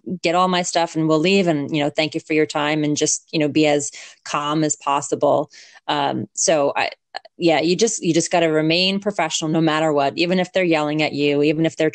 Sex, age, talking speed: female, 30-49, 240 wpm